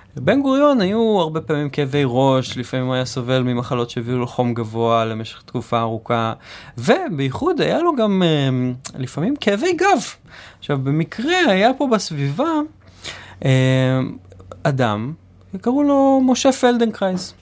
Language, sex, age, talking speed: Hebrew, male, 20-39, 120 wpm